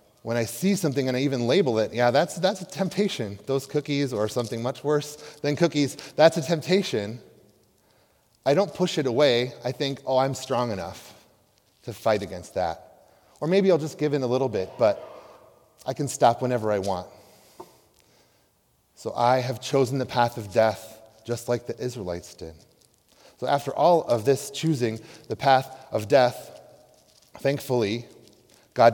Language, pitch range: English, 105-135 Hz